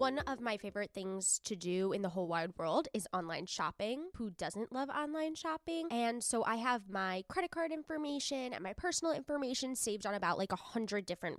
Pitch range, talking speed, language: 190-265 Hz, 205 wpm, English